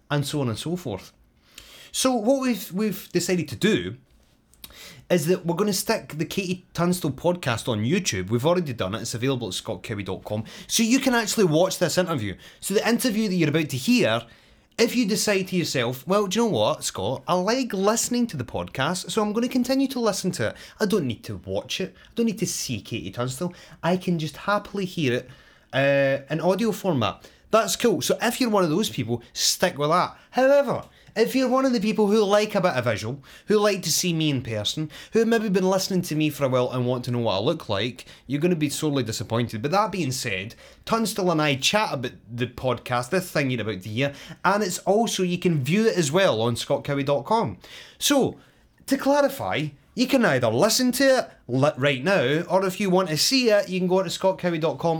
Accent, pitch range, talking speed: British, 130-210 Hz, 220 wpm